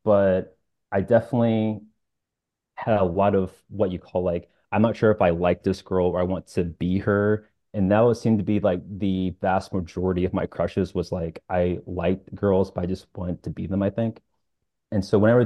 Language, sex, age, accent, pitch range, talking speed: English, male, 30-49, American, 90-105 Hz, 215 wpm